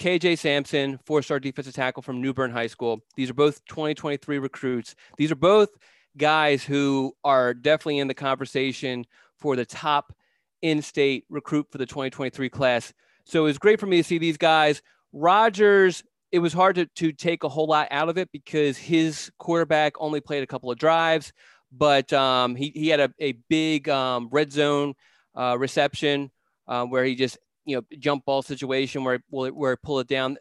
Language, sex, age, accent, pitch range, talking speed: English, male, 30-49, American, 130-155 Hz, 185 wpm